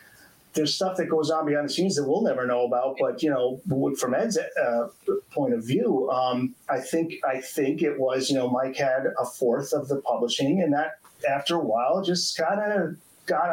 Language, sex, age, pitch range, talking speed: English, male, 30-49, 125-165 Hz, 210 wpm